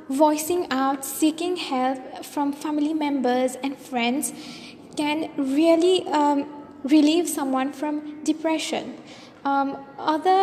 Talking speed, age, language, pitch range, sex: 105 wpm, 20-39, English, 270-315 Hz, female